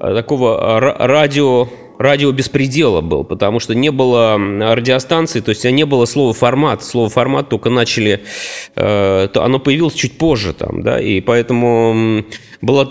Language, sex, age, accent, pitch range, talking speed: Russian, male, 20-39, native, 110-135 Hz, 130 wpm